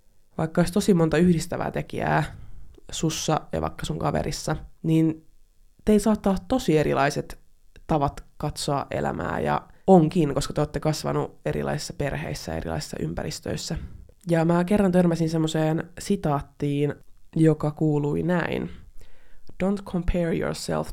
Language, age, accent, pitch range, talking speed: Finnish, 20-39, native, 105-170 Hz, 120 wpm